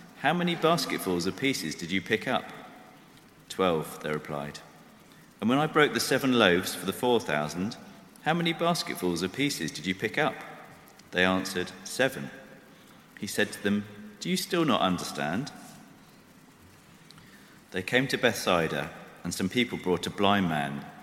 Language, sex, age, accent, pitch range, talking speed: English, male, 40-59, British, 85-125 Hz, 155 wpm